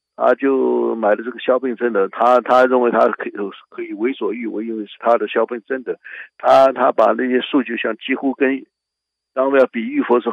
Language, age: Chinese, 60-79